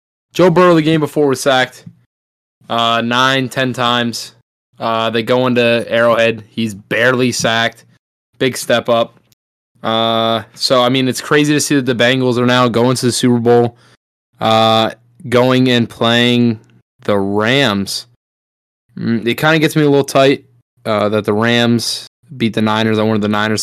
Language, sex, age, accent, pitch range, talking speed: English, male, 20-39, American, 110-125 Hz, 165 wpm